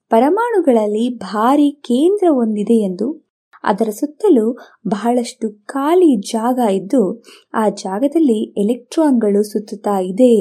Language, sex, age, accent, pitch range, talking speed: Kannada, female, 20-39, native, 220-295 Hz, 90 wpm